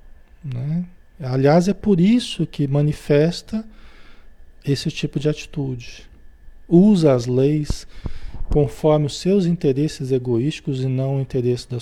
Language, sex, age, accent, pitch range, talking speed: Portuguese, male, 40-59, Brazilian, 125-175 Hz, 120 wpm